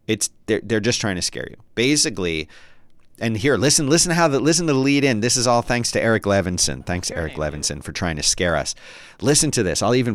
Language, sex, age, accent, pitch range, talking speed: English, male, 40-59, American, 90-125 Hz, 240 wpm